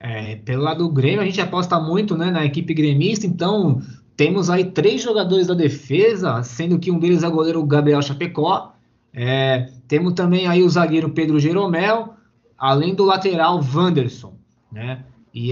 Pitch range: 140-190 Hz